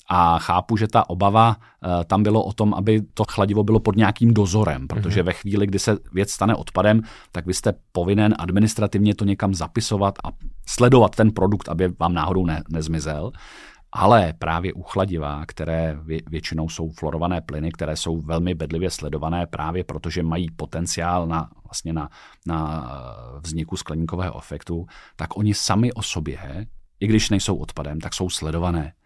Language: Czech